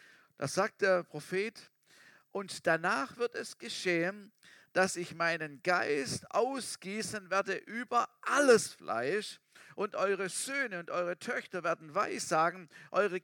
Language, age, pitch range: German, 50-69, 170-215 Hz